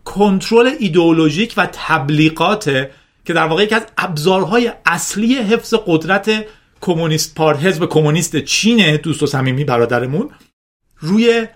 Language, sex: Persian, male